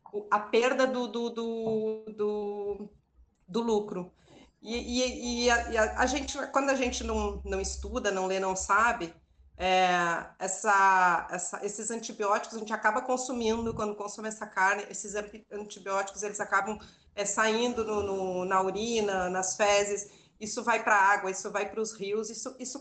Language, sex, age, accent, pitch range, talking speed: Portuguese, female, 30-49, Brazilian, 190-235 Hz, 165 wpm